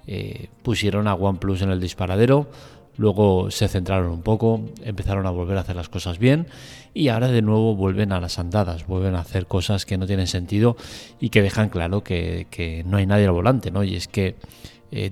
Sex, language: male, Spanish